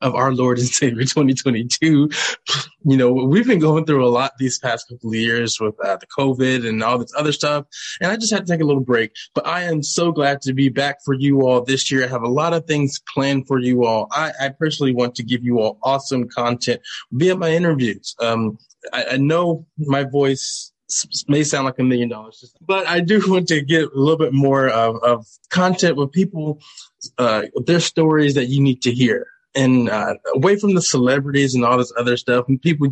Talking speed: 225 wpm